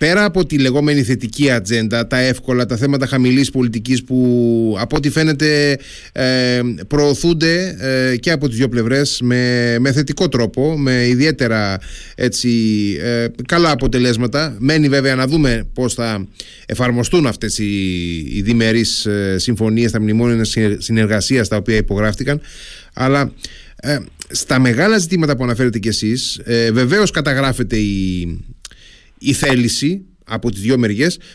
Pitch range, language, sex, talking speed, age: 110-145 Hz, Greek, male, 135 wpm, 30-49